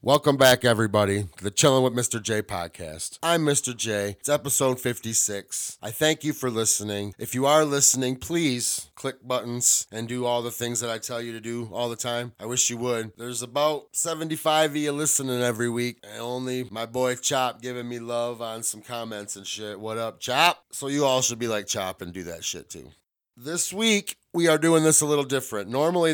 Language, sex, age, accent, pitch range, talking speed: English, male, 30-49, American, 110-135 Hz, 210 wpm